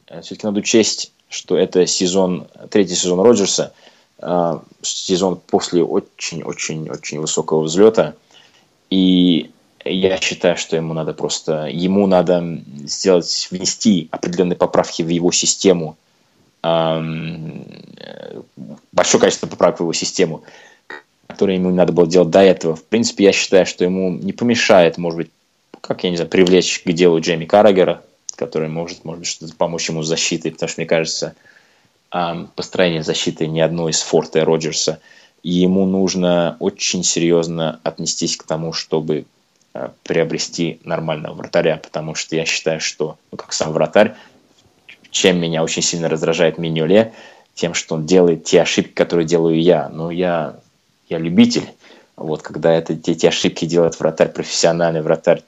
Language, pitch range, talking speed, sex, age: Russian, 80-90 Hz, 145 wpm, male, 20-39